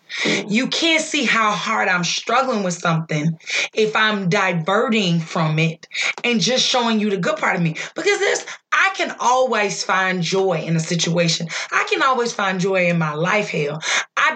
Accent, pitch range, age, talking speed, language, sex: American, 175-255 Hz, 20-39, 180 wpm, English, female